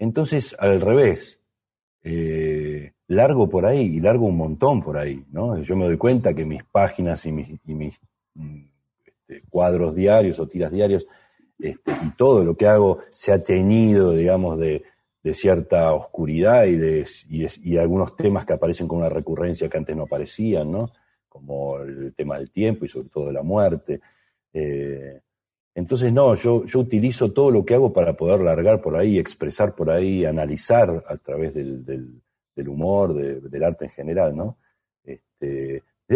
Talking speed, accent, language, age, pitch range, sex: 175 wpm, Argentinian, Spanish, 40-59, 75-100 Hz, male